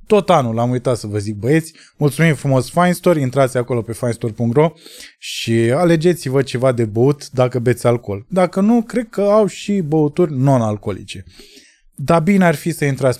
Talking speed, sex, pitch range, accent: 175 wpm, male, 115-160 Hz, native